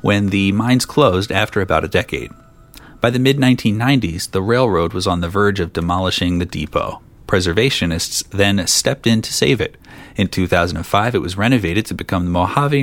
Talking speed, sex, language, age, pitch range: 175 wpm, male, English, 30-49, 90-125 Hz